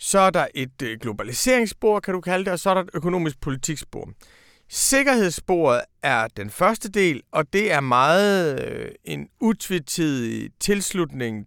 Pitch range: 130-185 Hz